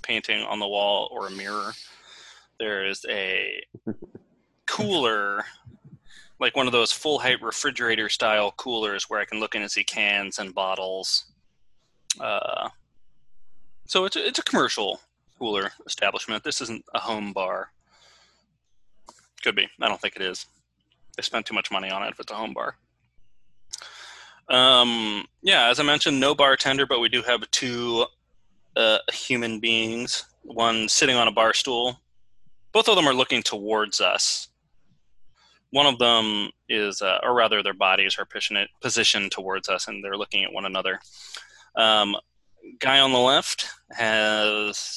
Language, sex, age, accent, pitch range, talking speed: English, male, 20-39, American, 105-130 Hz, 155 wpm